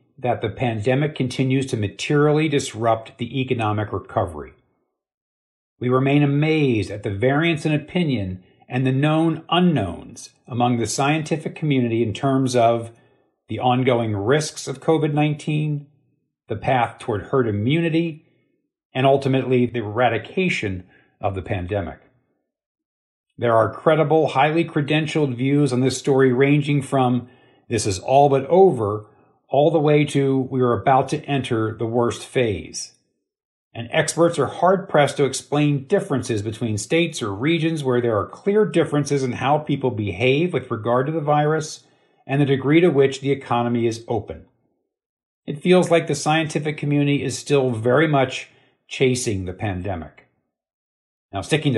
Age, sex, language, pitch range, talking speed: 50-69, male, English, 120-150 Hz, 145 wpm